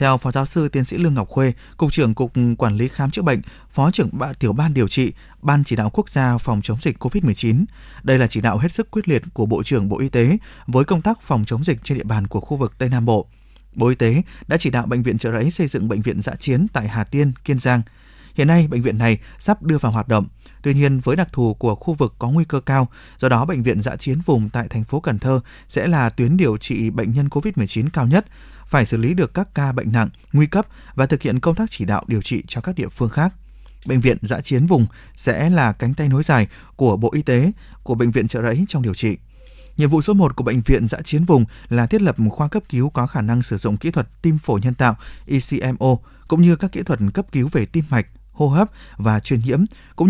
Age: 20-39